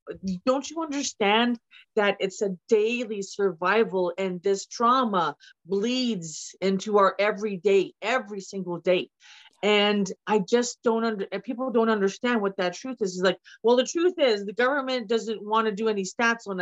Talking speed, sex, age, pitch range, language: 165 wpm, female, 40-59, 195-255 Hz, English